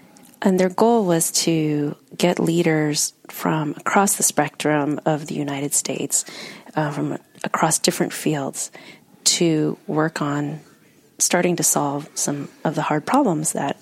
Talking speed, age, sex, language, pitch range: 140 wpm, 30-49, female, English, 150-175 Hz